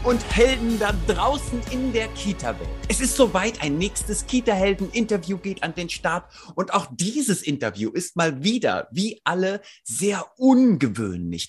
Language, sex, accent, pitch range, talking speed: German, male, German, 150-205 Hz, 145 wpm